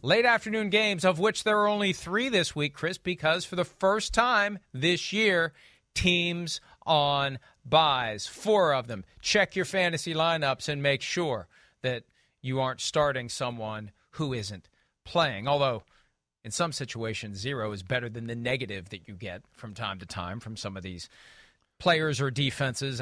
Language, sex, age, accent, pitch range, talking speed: English, male, 40-59, American, 130-175 Hz, 165 wpm